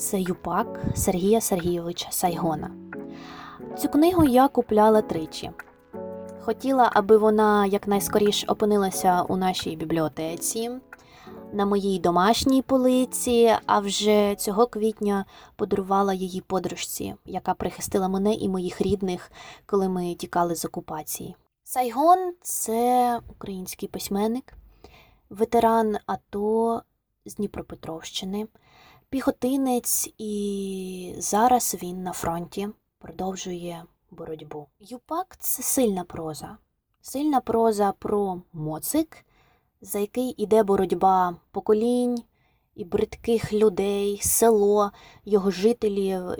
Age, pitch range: 20-39, 185-230 Hz